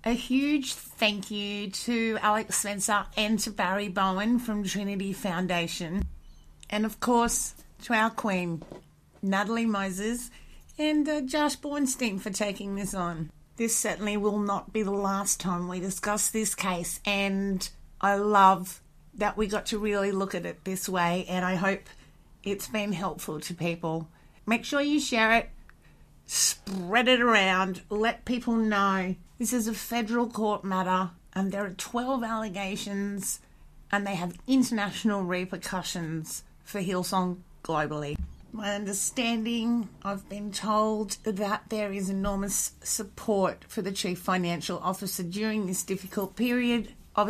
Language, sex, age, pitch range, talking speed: English, female, 30-49, 185-225 Hz, 145 wpm